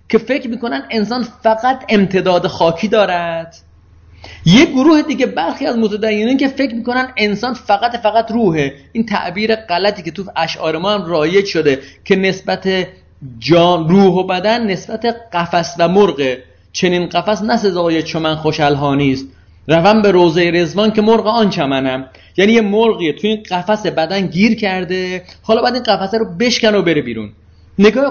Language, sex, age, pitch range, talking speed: Persian, male, 30-49, 155-220 Hz, 150 wpm